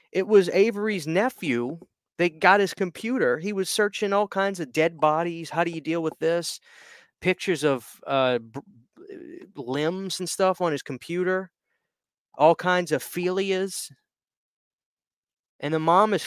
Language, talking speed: English, 150 wpm